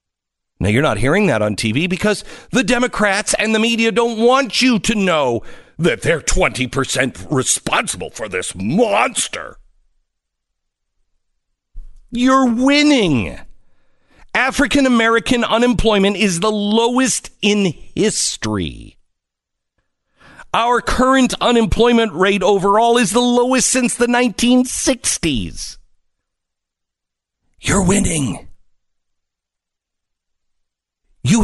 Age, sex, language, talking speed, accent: 50-69, male, English, 95 wpm, American